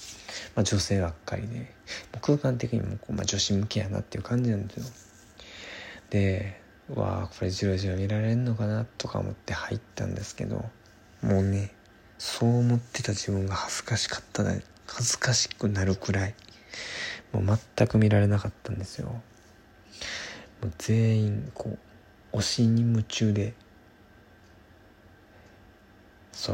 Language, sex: Japanese, male